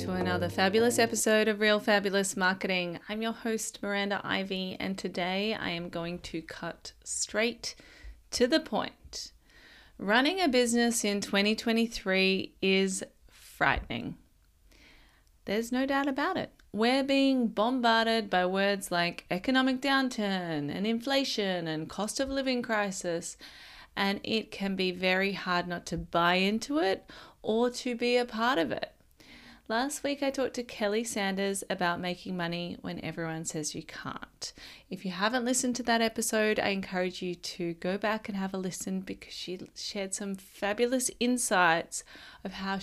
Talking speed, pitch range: 155 wpm, 185-230 Hz